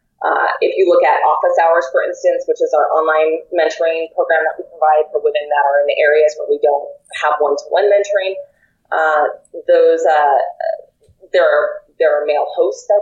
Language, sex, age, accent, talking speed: English, female, 30-49, American, 190 wpm